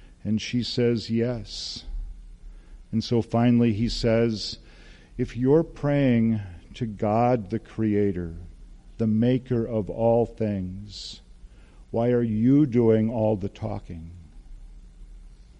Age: 50-69